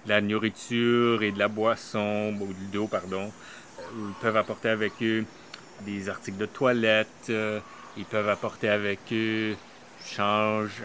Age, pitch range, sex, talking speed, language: 30-49, 105-125 Hz, male, 145 wpm, French